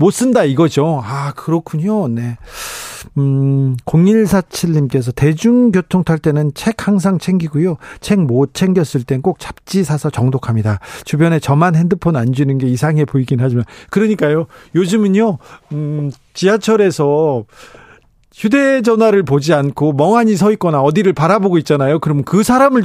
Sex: male